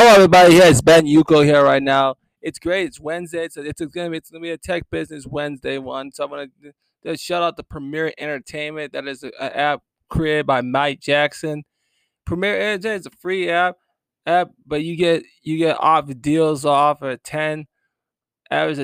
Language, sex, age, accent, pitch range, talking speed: English, male, 20-39, American, 140-165 Hz, 190 wpm